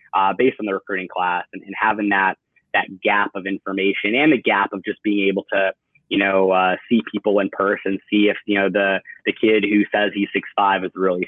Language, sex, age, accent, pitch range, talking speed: English, male, 20-39, American, 95-105 Hz, 230 wpm